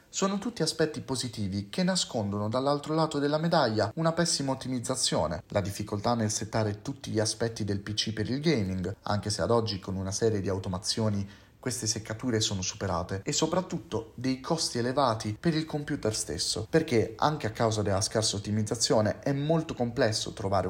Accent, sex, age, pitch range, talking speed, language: native, male, 30-49, 105-135 Hz, 170 wpm, Italian